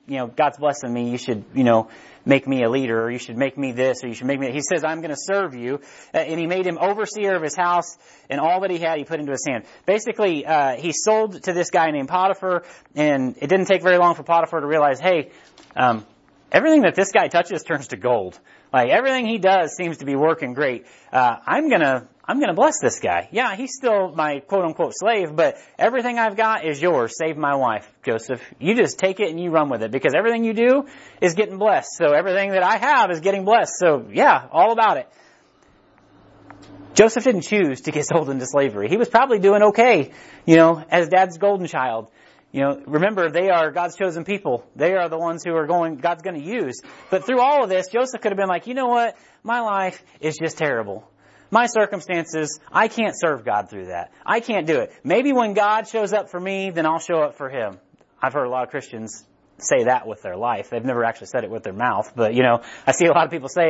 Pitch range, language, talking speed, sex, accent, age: 140-200 Hz, English, 240 wpm, male, American, 30-49